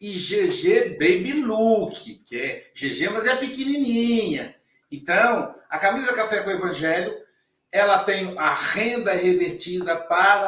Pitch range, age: 175-230 Hz, 60-79